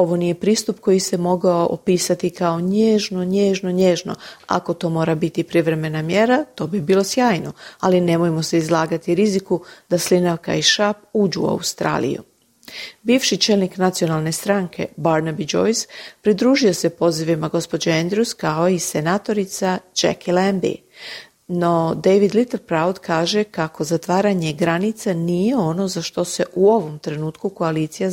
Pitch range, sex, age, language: 165-205 Hz, female, 40-59, Croatian